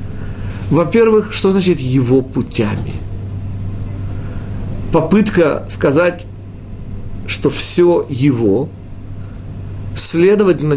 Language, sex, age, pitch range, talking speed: Russian, male, 50-69, 100-160 Hz, 60 wpm